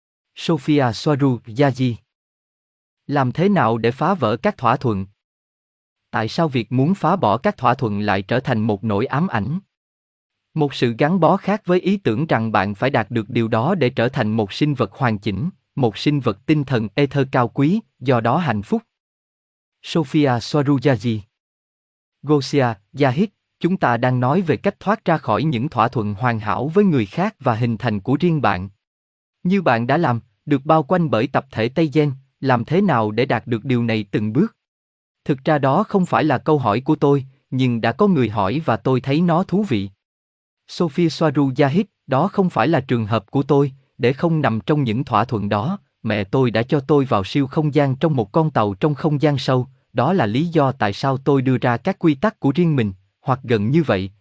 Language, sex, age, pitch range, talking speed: Vietnamese, male, 20-39, 115-155 Hz, 205 wpm